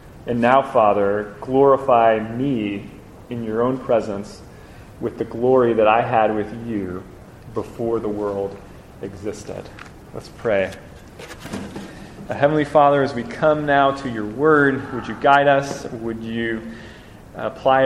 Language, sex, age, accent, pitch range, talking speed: English, male, 30-49, American, 115-150 Hz, 130 wpm